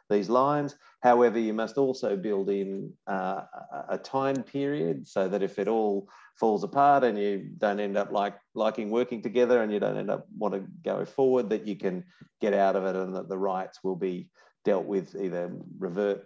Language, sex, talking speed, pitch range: English, male, 200 wpm, 100-120 Hz